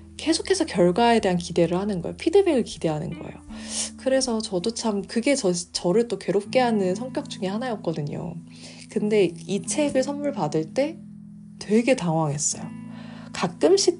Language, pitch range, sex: Korean, 175-220 Hz, female